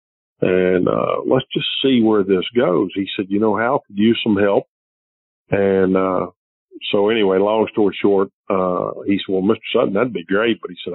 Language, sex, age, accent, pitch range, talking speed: English, male, 50-69, American, 95-110 Hz, 205 wpm